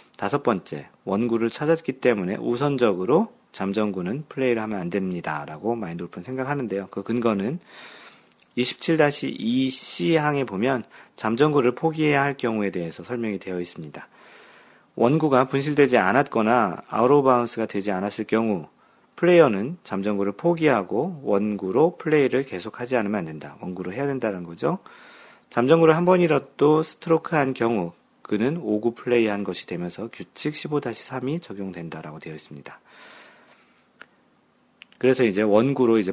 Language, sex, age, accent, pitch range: Korean, male, 40-59, native, 100-140 Hz